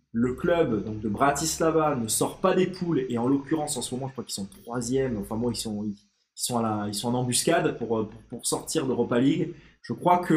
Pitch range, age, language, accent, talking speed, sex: 115-155 Hz, 20-39, French, French, 245 wpm, male